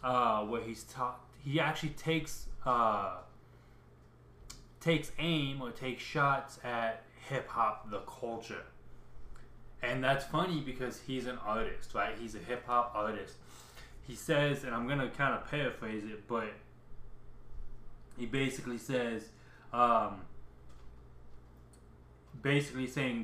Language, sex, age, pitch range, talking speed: English, male, 20-39, 110-135 Hz, 115 wpm